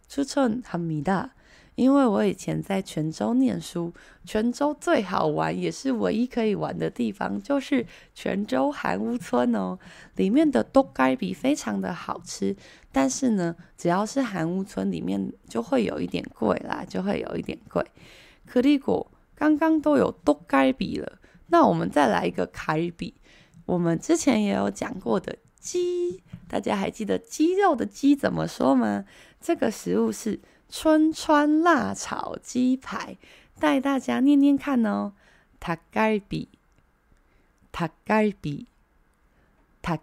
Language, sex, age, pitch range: Chinese, female, 20-39, 165-275 Hz